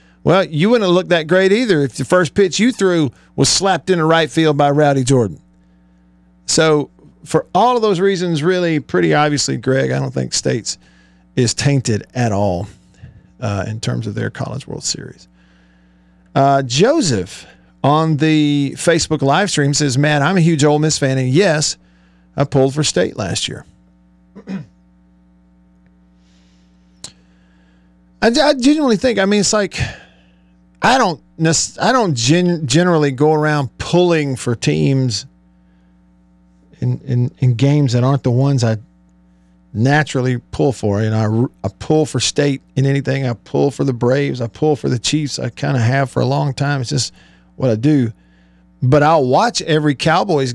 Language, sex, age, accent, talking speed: English, male, 50-69, American, 170 wpm